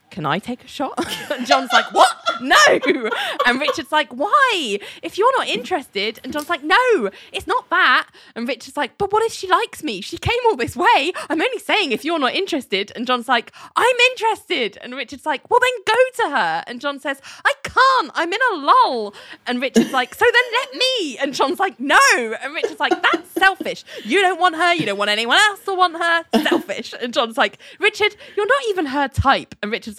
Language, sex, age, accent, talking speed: English, female, 20-39, British, 215 wpm